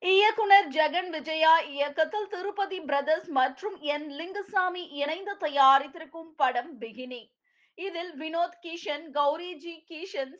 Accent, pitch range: native, 275-360 Hz